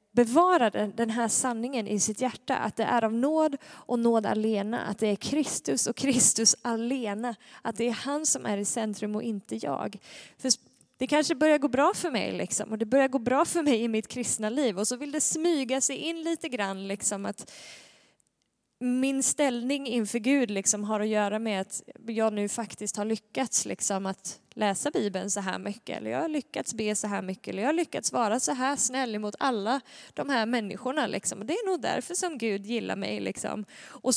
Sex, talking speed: female, 205 wpm